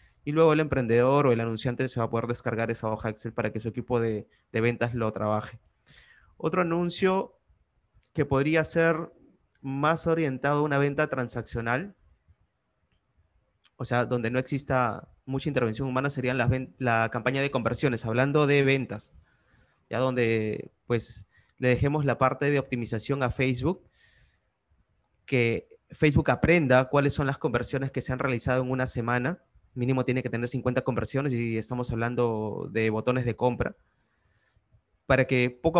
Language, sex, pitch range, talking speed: Spanish, male, 115-145 Hz, 155 wpm